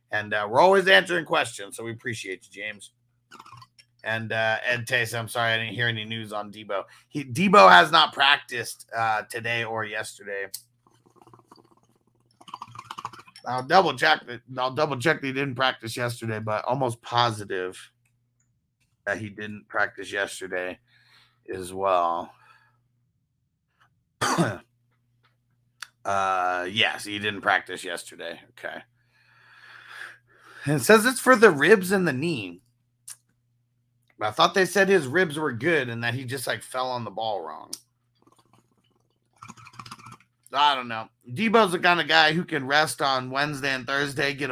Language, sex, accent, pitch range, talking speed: English, male, American, 115-135 Hz, 145 wpm